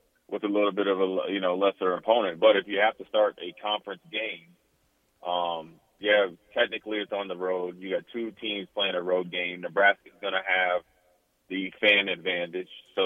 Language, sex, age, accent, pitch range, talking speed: English, male, 30-49, American, 90-105 Hz, 190 wpm